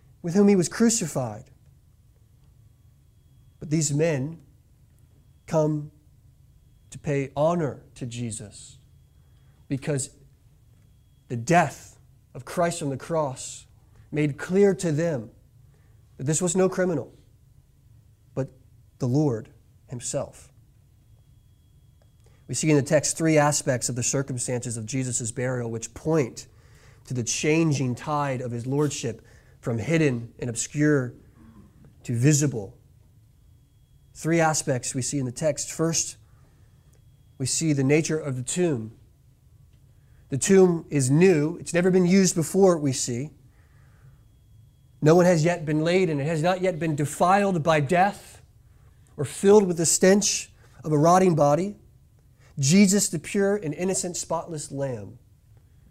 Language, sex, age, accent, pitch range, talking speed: English, male, 30-49, American, 120-160 Hz, 130 wpm